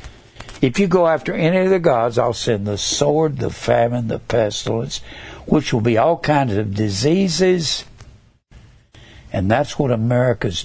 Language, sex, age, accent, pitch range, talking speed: English, male, 60-79, American, 115-160 Hz, 150 wpm